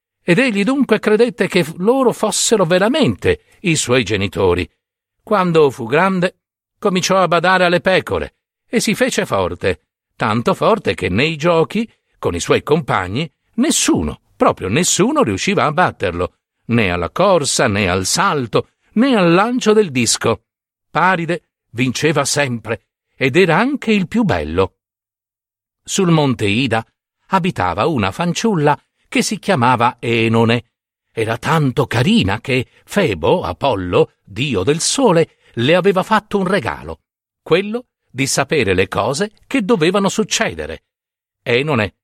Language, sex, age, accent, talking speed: Italian, male, 60-79, native, 130 wpm